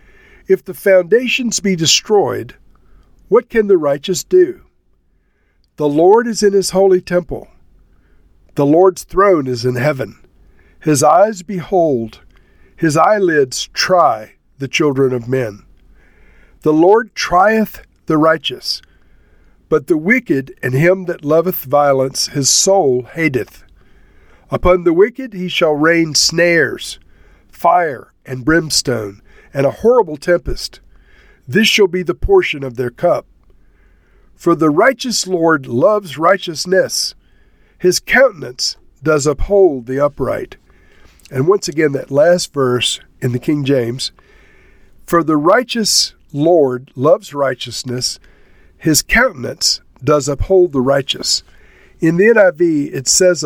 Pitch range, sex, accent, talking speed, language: 130-185 Hz, male, American, 125 wpm, English